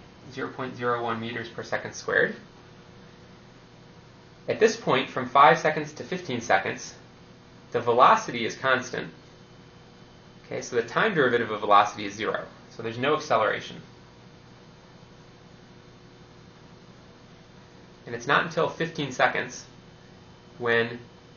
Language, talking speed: English, 105 wpm